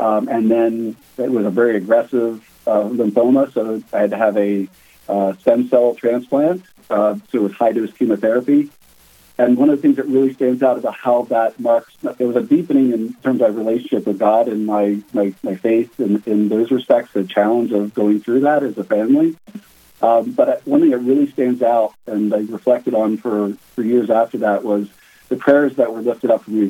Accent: American